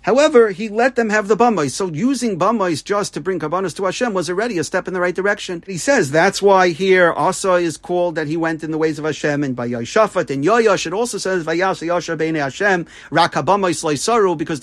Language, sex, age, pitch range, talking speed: English, male, 40-59, 160-210 Hz, 215 wpm